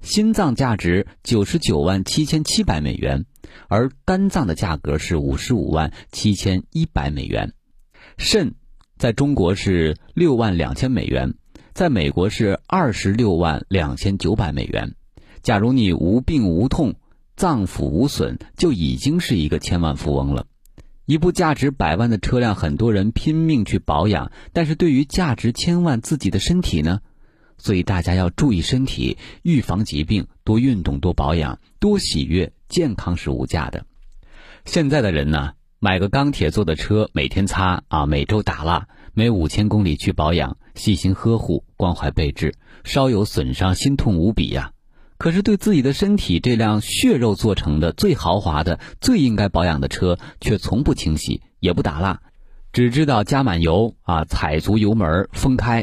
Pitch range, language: 80-125 Hz, Chinese